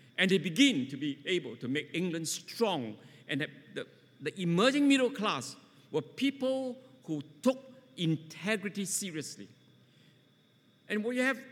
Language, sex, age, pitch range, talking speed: English, male, 60-79, 135-225 Hz, 135 wpm